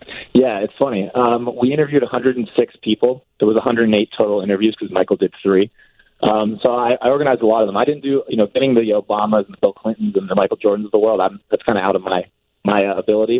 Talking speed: 240 wpm